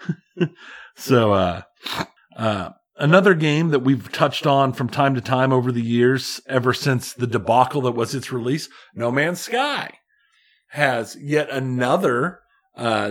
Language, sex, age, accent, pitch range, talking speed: English, male, 40-59, American, 105-160 Hz, 140 wpm